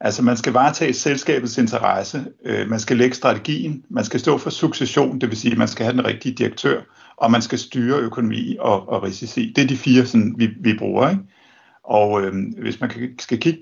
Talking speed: 220 wpm